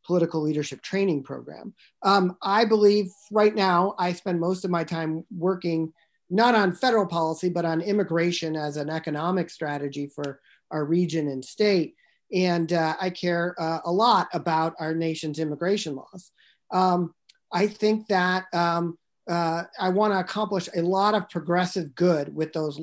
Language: English